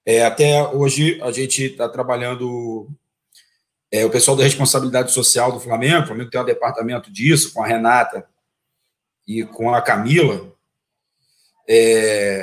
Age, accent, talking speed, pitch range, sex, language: 40-59, Brazilian, 140 wpm, 145-200 Hz, male, Portuguese